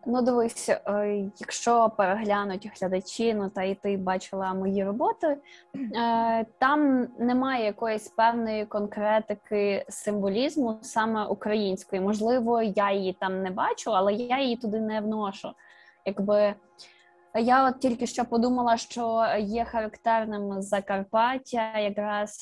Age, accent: 20-39, native